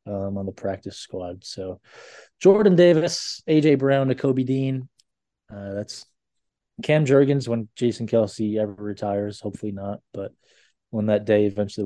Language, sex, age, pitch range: English, male, 20-39, 105-130 Hz